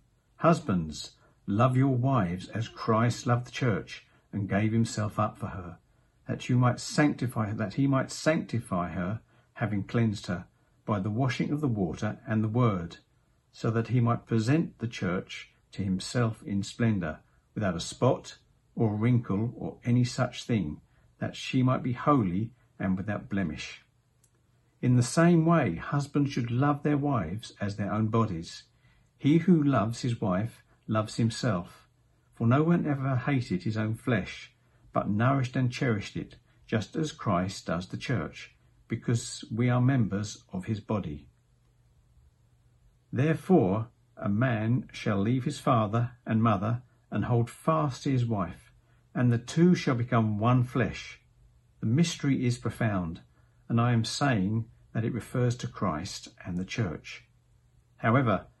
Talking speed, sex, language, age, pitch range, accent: 155 wpm, male, English, 50-69, 110-130 Hz, British